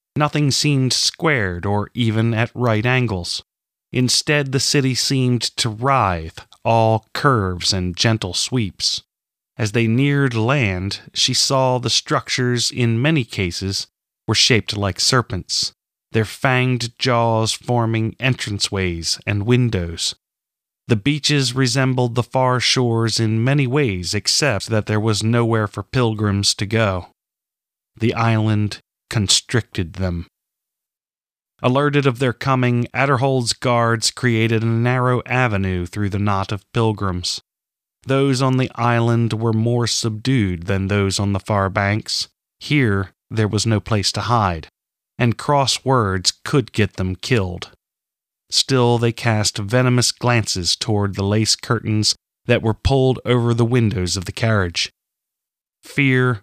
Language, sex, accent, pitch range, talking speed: English, male, American, 100-125 Hz, 130 wpm